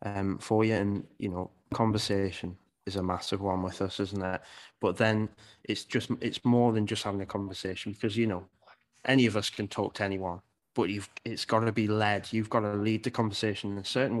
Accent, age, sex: British, 20-39, male